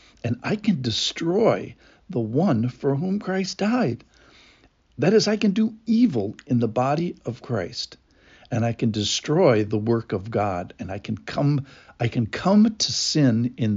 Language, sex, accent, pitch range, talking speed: English, male, American, 110-150 Hz, 170 wpm